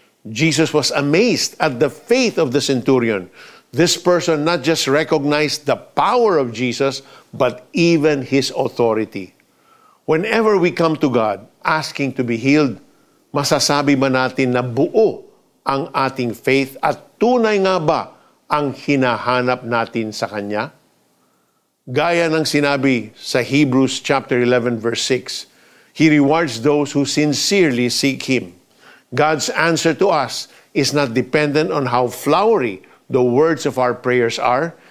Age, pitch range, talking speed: 50-69, 125-155 Hz, 135 wpm